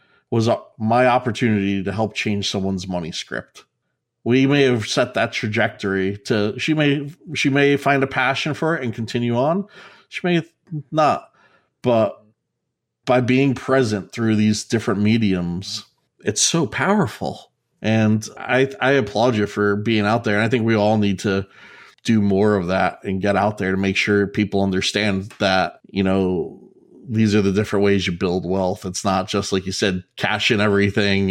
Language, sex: English, male